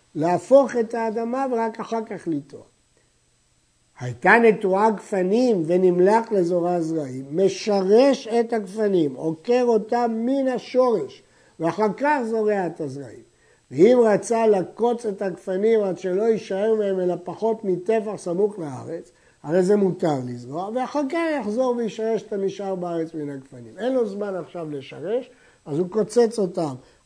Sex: male